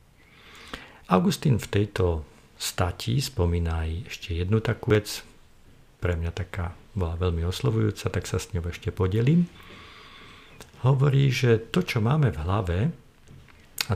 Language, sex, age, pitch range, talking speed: Slovak, male, 50-69, 90-115 Hz, 130 wpm